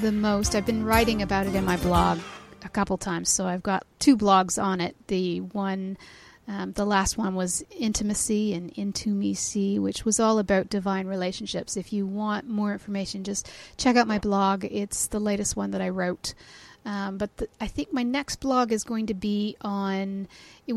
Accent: American